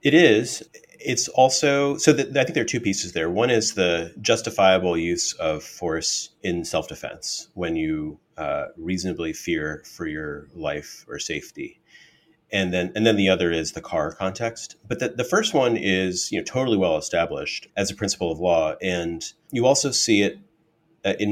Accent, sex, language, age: American, male, English, 30-49